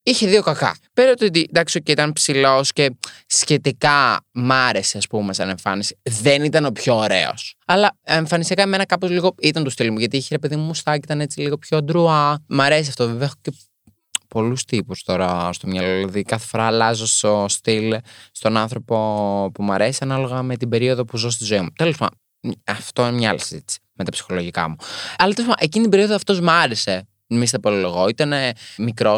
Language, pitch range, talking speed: Greek, 105-150 Hz, 205 wpm